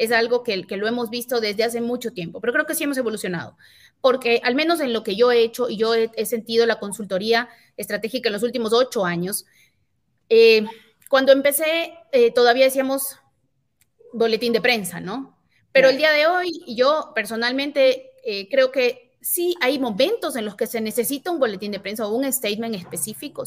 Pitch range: 230-315 Hz